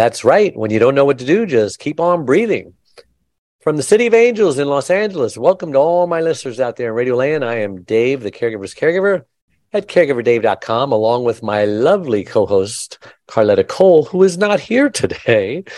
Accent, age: American, 50-69